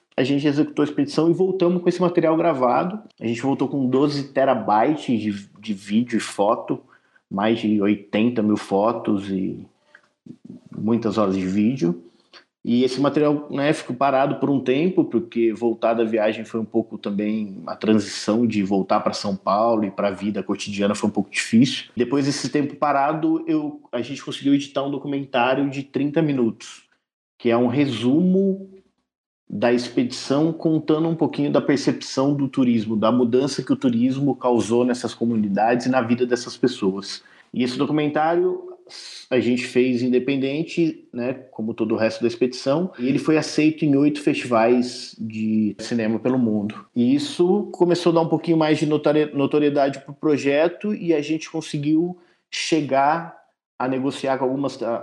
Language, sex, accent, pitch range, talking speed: Portuguese, male, Brazilian, 115-155 Hz, 165 wpm